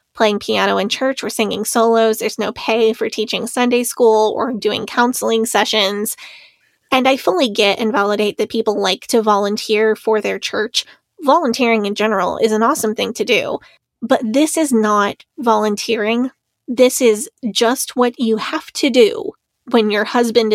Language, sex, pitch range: English, female, 215-245 Hz